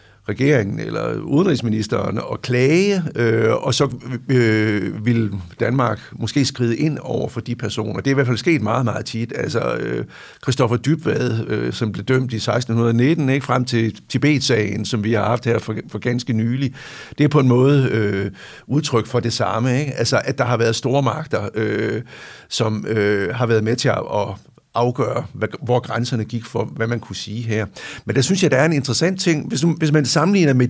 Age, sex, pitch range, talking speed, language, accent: 60-79, male, 110-140 Hz, 195 wpm, Danish, native